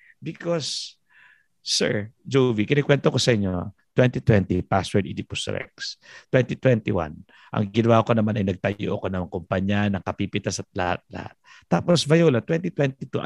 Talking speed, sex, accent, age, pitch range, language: 125 wpm, male, native, 50-69, 110-165 Hz, Filipino